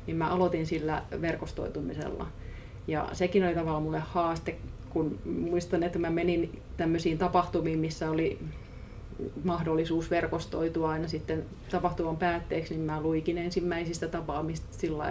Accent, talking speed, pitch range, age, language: native, 125 wpm, 155-175 Hz, 30-49, Finnish